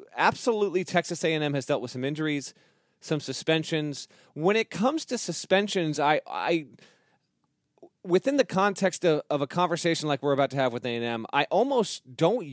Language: English